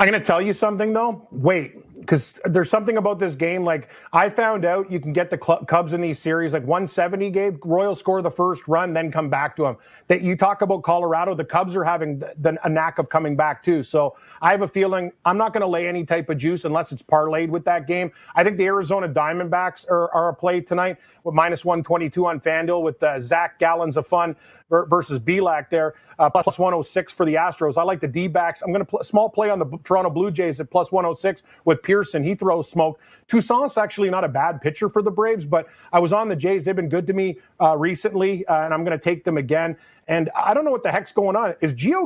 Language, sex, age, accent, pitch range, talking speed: English, male, 30-49, American, 160-195 Hz, 245 wpm